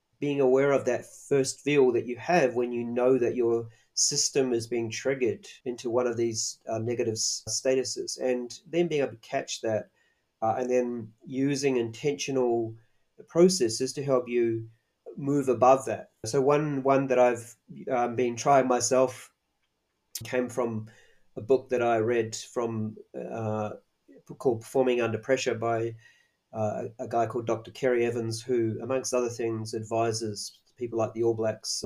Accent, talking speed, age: Australian, 160 wpm, 40-59